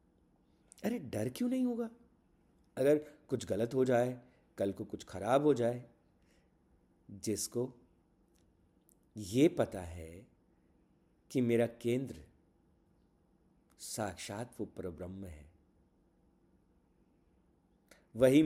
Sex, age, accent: male, 50-69, native